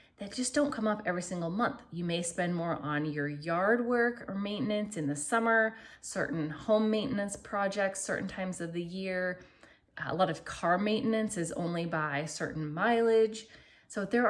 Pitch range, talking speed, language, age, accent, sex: 160-215 Hz, 170 wpm, English, 20-39, American, female